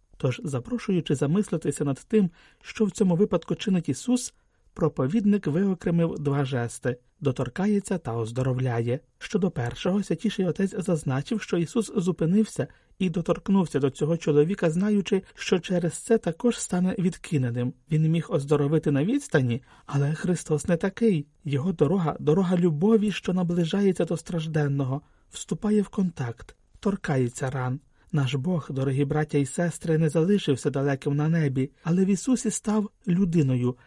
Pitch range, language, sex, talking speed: 145-195 Hz, Ukrainian, male, 135 wpm